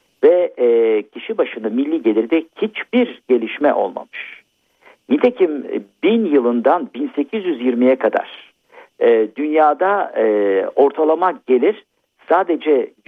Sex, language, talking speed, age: male, Turkish, 85 wpm, 50-69